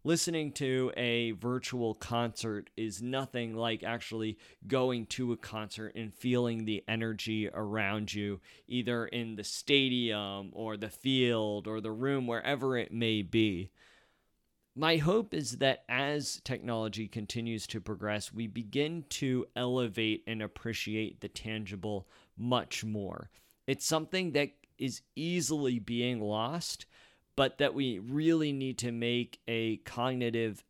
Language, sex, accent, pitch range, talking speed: English, male, American, 110-125 Hz, 135 wpm